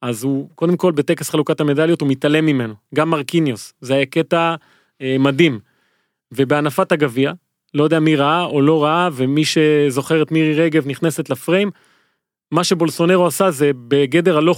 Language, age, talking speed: Hebrew, 30-49, 155 wpm